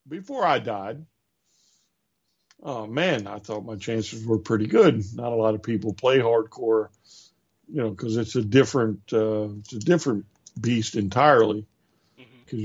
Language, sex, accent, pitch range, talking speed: English, male, American, 110-130 Hz, 150 wpm